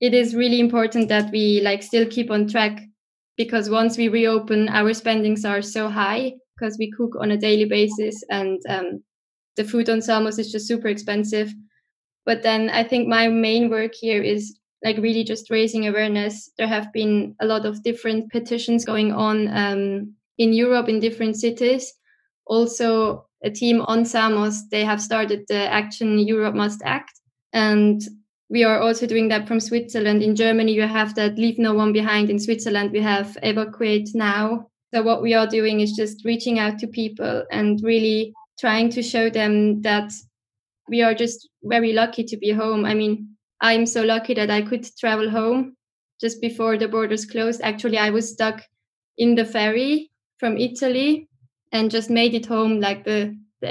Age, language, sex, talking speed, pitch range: 10-29, German, female, 180 wpm, 210-230 Hz